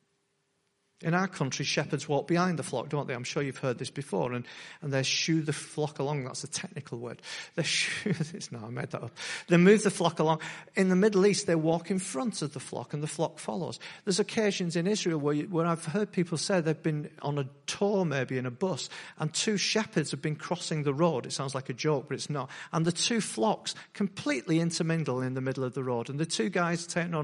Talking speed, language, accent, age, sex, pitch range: 240 wpm, English, British, 40-59, male, 140-180 Hz